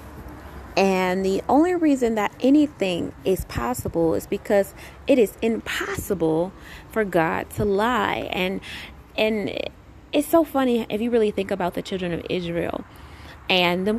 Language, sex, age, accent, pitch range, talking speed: English, female, 20-39, American, 200-265 Hz, 140 wpm